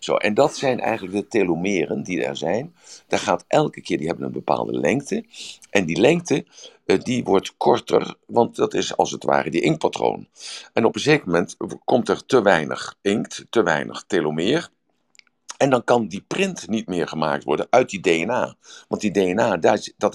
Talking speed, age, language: 180 wpm, 50-69, Dutch